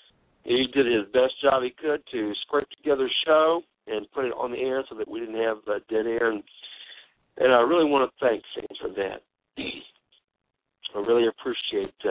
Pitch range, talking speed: 110-140 Hz, 195 wpm